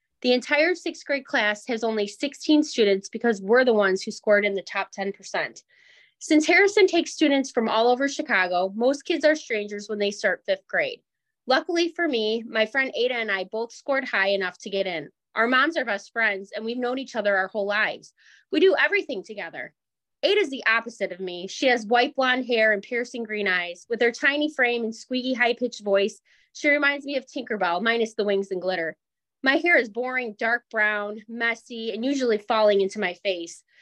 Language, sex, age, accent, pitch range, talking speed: English, female, 20-39, American, 205-270 Hz, 200 wpm